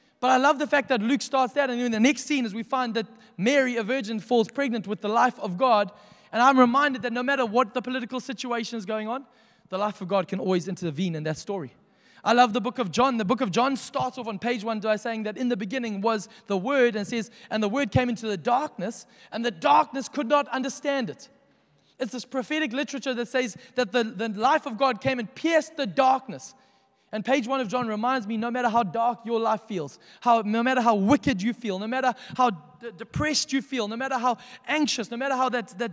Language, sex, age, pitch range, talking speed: English, male, 20-39, 215-260 Hz, 245 wpm